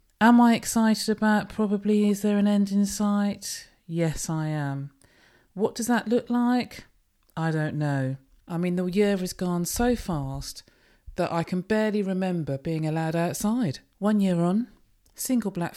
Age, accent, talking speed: 40-59, British, 165 wpm